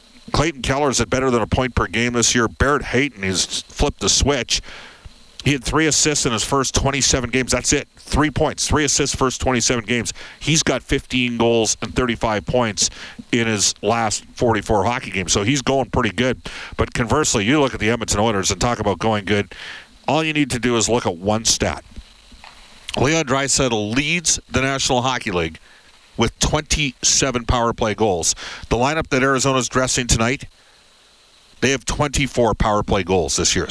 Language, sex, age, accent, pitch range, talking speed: English, male, 50-69, American, 105-135 Hz, 180 wpm